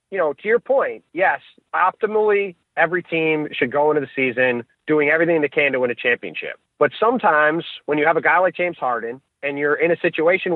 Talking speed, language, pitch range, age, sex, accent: 210 wpm, English, 150-180 Hz, 30-49, male, American